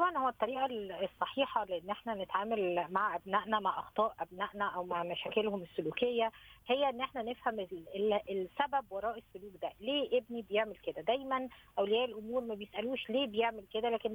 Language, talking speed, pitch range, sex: Arabic, 155 wpm, 215-265 Hz, female